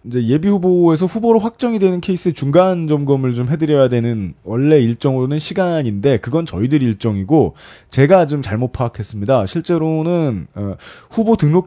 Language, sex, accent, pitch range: Korean, male, native, 120-185 Hz